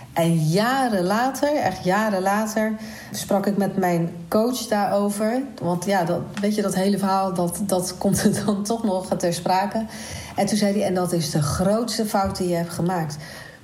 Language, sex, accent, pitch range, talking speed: Dutch, female, Dutch, 175-215 Hz, 190 wpm